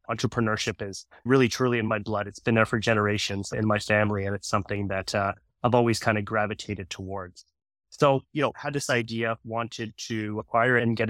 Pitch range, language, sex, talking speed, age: 105-120 Hz, English, male, 200 wpm, 20-39